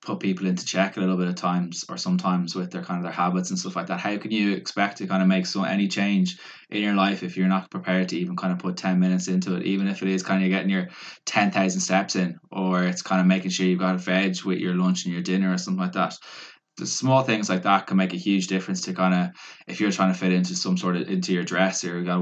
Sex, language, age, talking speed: male, English, 20-39, 290 wpm